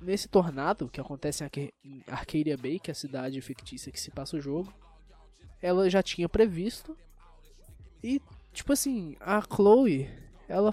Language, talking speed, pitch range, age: Portuguese, 160 wpm, 150-220 Hz, 20-39